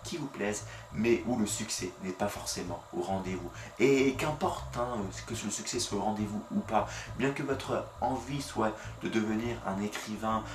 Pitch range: 100-120 Hz